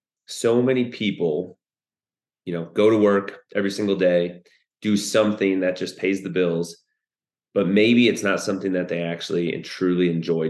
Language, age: English, 30-49